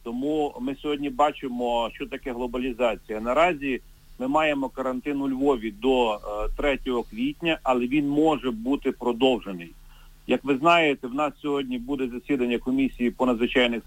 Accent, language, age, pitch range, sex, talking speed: native, Ukrainian, 40-59, 125-150 Hz, male, 140 wpm